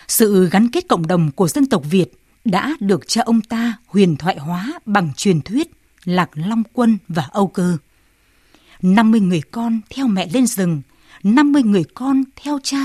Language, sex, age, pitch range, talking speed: Vietnamese, female, 20-39, 180-240 Hz, 180 wpm